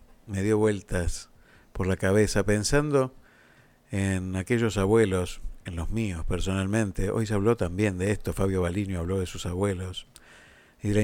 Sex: male